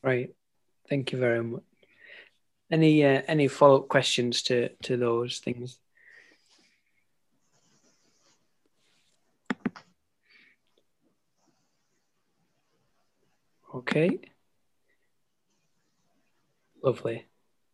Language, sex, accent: English, male, British